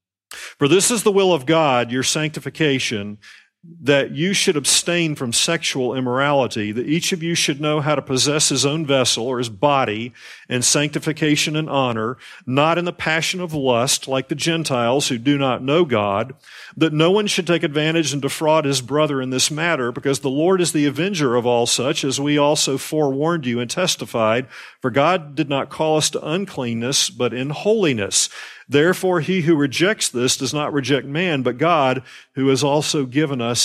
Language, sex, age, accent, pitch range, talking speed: English, male, 40-59, American, 125-155 Hz, 185 wpm